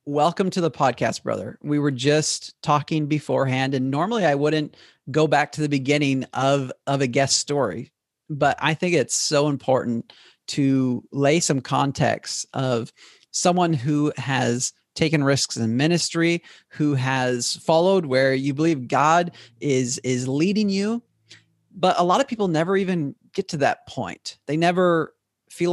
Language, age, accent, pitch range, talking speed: English, 40-59, American, 135-170 Hz, 155 wpm